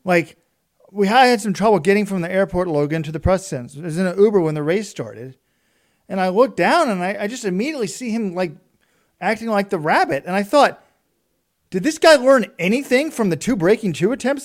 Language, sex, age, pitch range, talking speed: English, male, 40-59, 175-230 Hz, 220 wpm